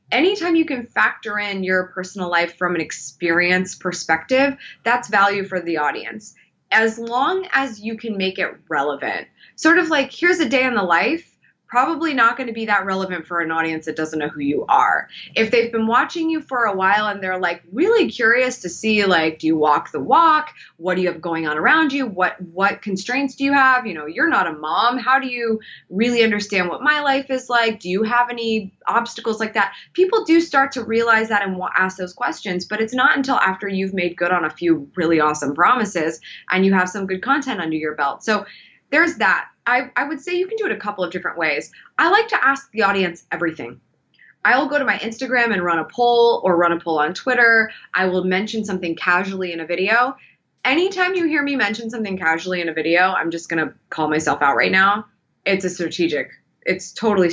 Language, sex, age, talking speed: English, female, 20-39, 220 wpm